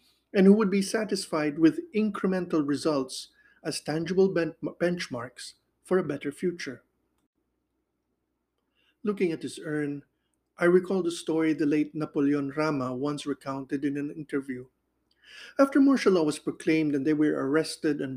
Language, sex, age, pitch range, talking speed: English, male, 50-69, 145-185 Hz, 140 wpm